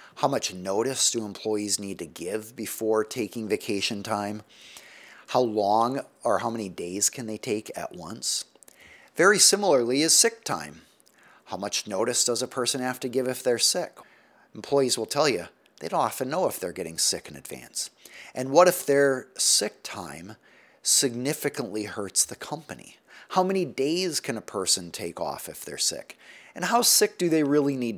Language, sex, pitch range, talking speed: English, male, 110-145 Hz, 175 wpm